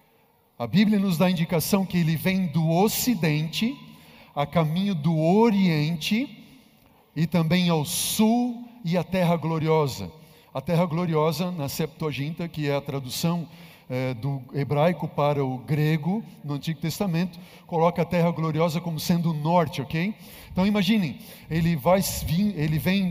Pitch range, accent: 155-185 Hz, Brazilian